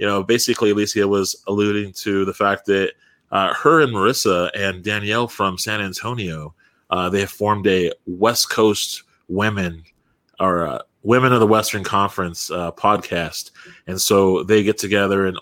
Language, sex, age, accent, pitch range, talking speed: English, male, 20-39, American, 95-110 Hz, 155 wpm